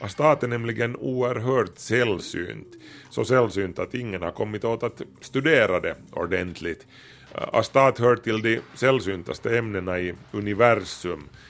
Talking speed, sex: 125 wpm, male